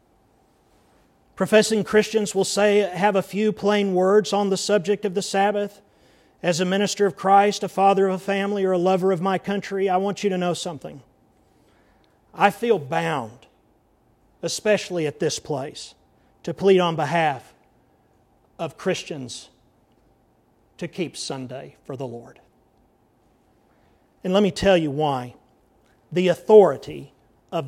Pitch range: 165-205 Hz